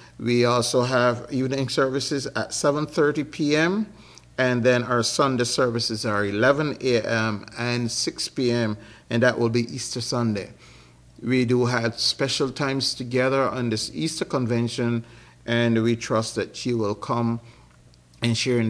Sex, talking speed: male, 145 wpm